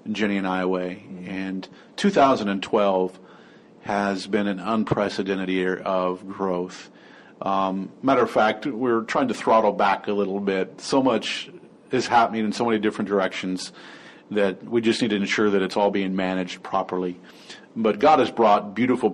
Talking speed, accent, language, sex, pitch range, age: 155 wpm, American, English, male, 95-110 Hz, 40-59